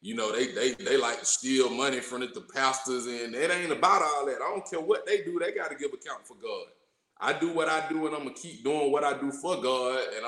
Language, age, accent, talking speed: English, 20-39, American, 280 wpm